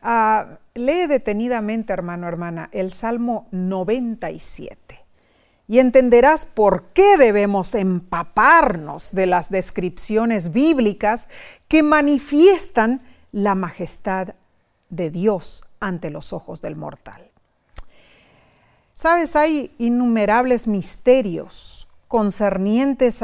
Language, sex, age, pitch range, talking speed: Spanish, female, 40-59, 195-265 Hz, 85 wpm